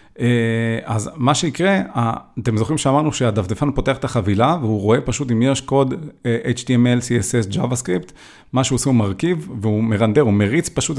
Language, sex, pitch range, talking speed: Hebrew, male, 115-145 Hz, 160 wpm